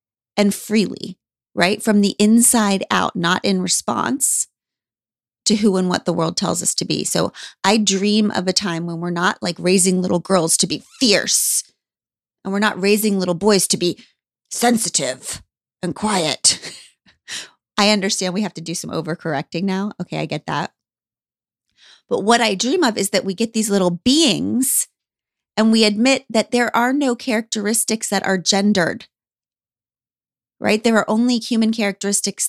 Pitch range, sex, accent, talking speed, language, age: 180-225 Hz, female, American, 165 wpm, English, 30-49